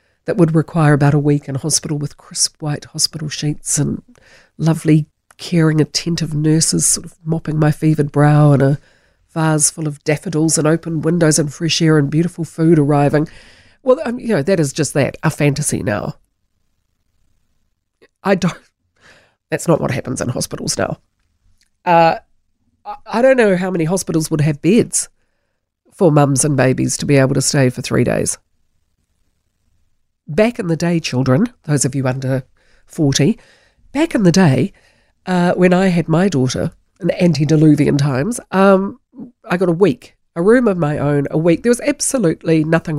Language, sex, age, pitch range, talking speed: English, female, 40-59, 145-180 Hz, 165 wpm